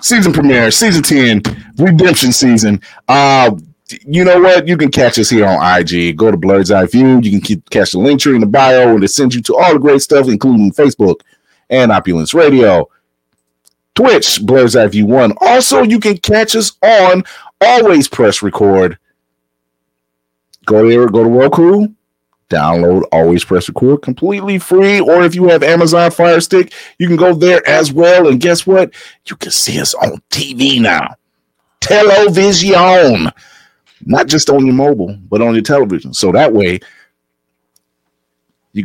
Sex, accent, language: male, American, English